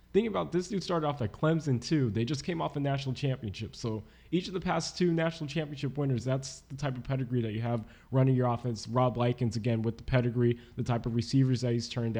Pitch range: 115-135 Hz